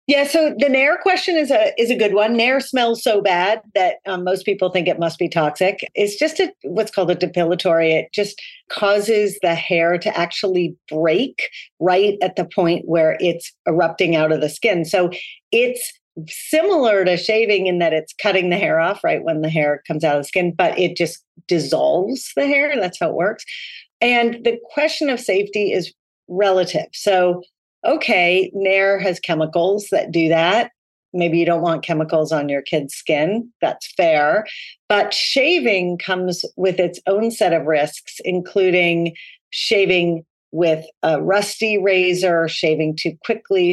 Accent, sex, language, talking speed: American, female, English, 170 wpm